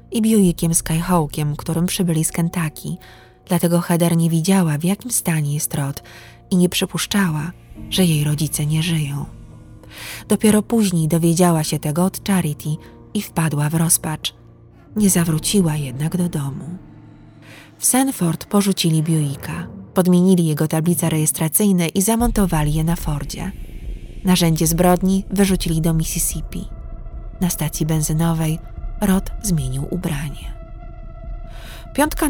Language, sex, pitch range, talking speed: Polish, female, 150-180 Hz, 120 wpm